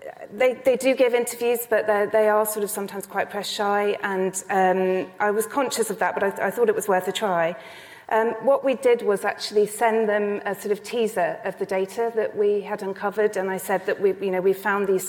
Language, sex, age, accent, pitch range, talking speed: English, female, 40-59, British, 180-215 Hz, 240 wpm